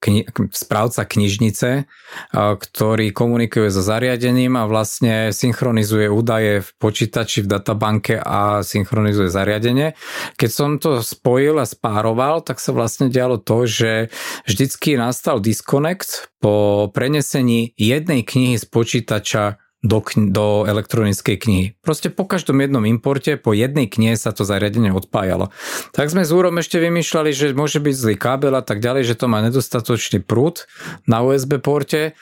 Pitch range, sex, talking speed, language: 110-135 Hz, male, 140 wpm, Slovak